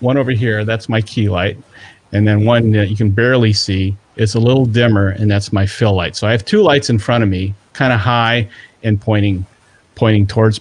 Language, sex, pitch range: English, male, 100-120 Hz